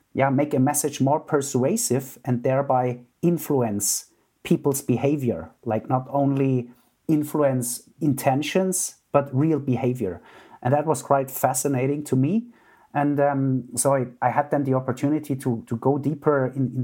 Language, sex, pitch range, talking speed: English, male, 130-155 Hz, 145 wpm